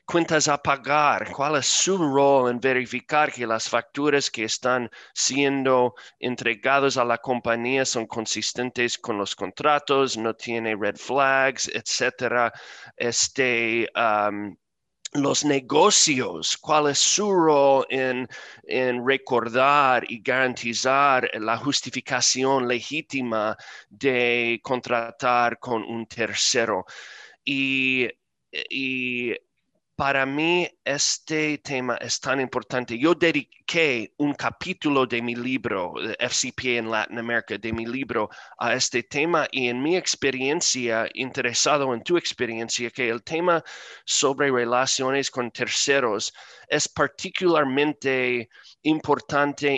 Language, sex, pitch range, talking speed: Spanish, male, 120-140 Hz, 110 wpm